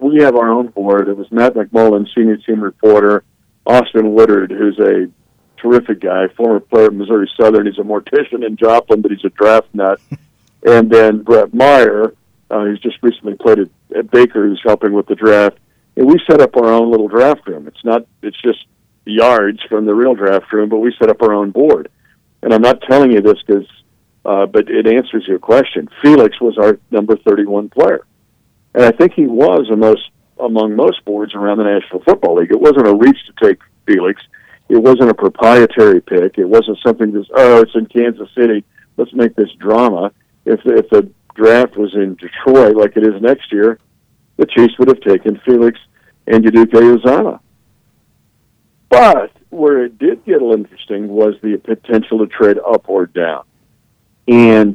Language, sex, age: English, male, 50-69